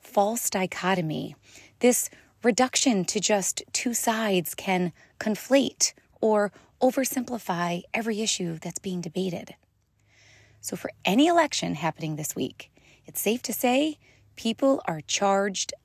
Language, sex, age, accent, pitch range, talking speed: English, female, 30-49, American, 170-235 Hz, 115 wpm